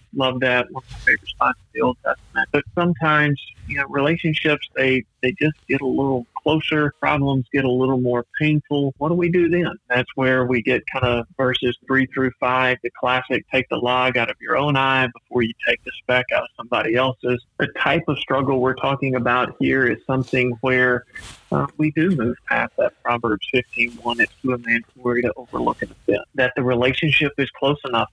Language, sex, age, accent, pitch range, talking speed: English, male, 40-59, American, 125-135 Hz, 205 wpm